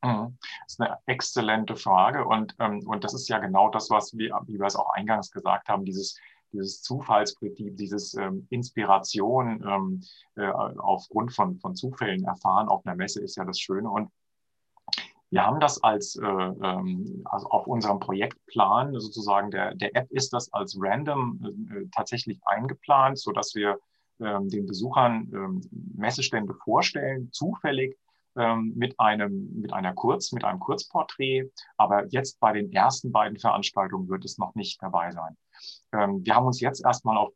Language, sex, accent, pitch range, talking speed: German, male, German, 100-135 Hz, 160 wpm